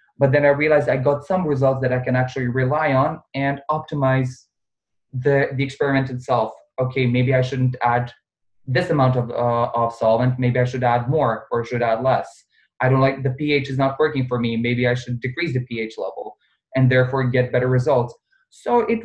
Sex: male